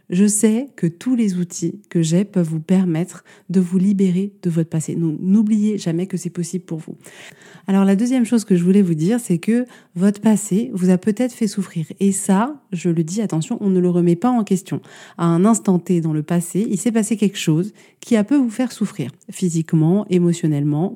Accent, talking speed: French, 220 wpm